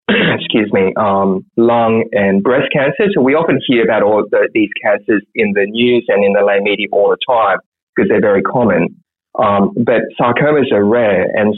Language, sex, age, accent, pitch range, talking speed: English, male, 20-39, Australian, 100-125 Hz, 190 wpm